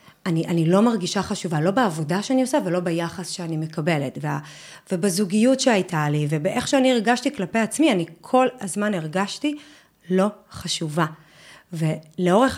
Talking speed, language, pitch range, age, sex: 140 wpm, Hebrew, 170-250 Hz, 30-49, female